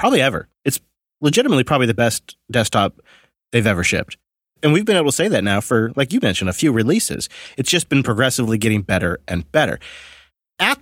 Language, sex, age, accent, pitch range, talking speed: English, male, 30-49, American, 110-150 Hz, 195 wpm